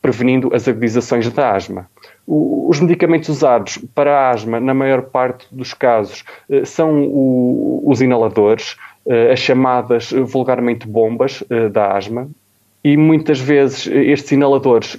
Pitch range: 120-140 Hz